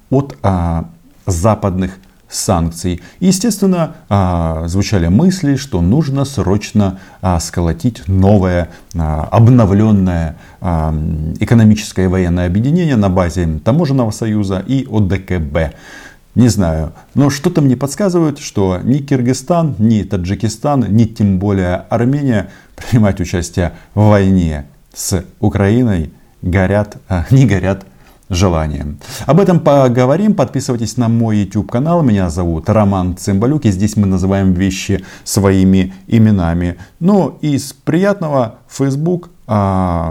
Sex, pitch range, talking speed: male, 90-125 Hz, 115 wpm